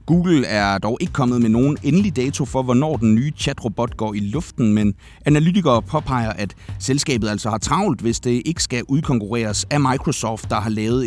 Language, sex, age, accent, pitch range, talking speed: Danish, male, 30-49, native, 105-135 Hz, 195 wpm